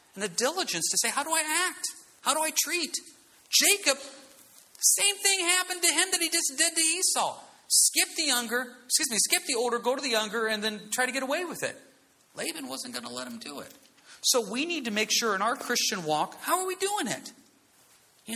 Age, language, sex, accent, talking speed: 40-59, English, male, American, 225 wpm